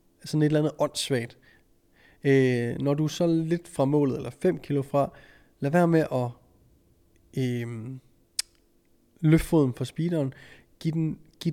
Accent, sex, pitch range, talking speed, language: native, male, 125-145 Hz, 150 wpm, Danish